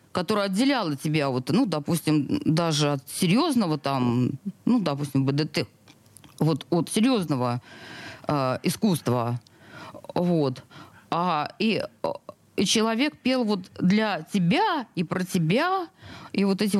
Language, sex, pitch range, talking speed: Russian, female, 155-225 Hz, 105 wpm